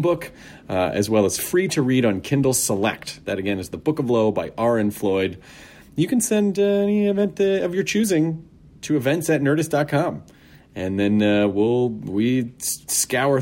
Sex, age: male, 30-49